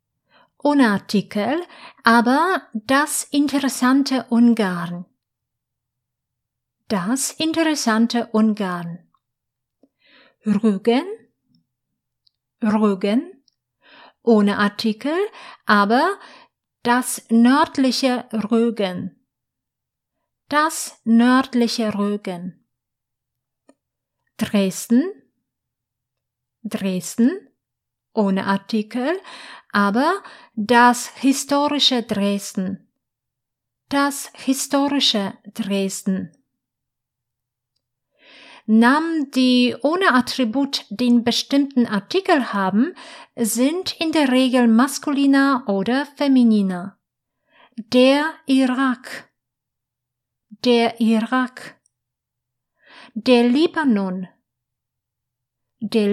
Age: 50-69